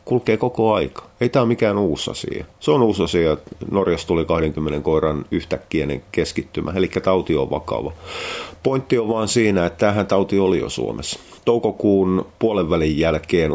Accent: native